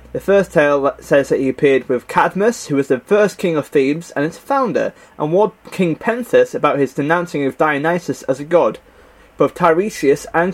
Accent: British